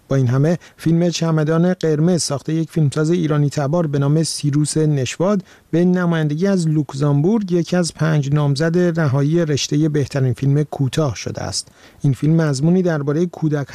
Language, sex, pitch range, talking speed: Persian, male, 140-170 Hz, 155 wpm